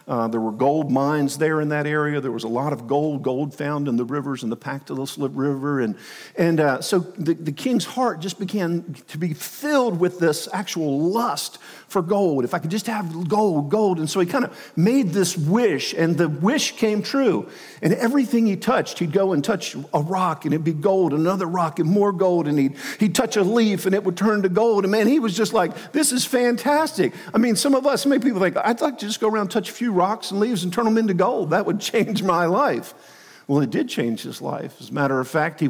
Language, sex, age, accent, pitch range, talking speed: English, male, 50-69, American, 150-215 Hz, 250 wpm